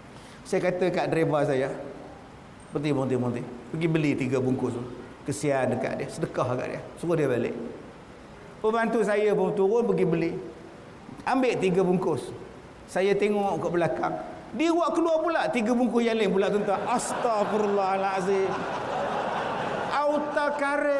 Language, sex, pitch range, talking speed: Malay, male, 180-260 Hz, 130 wpm